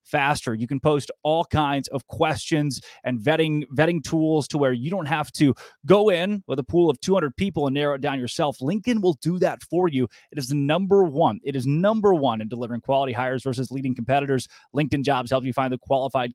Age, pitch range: 20-39, 130-170 Hz